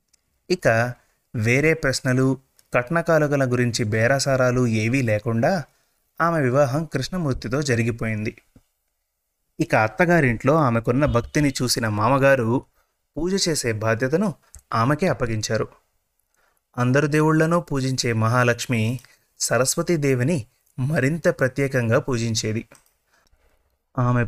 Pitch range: 115-150 Hz